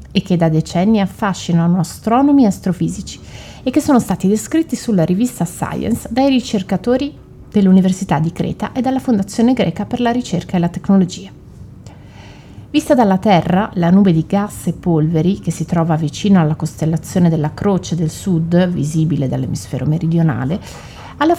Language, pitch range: Italian, 170-235 Hz